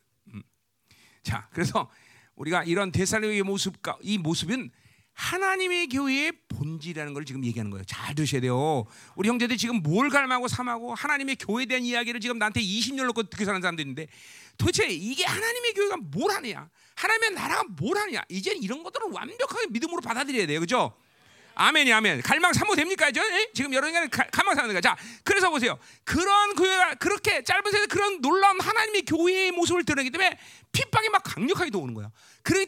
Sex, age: male, 40-59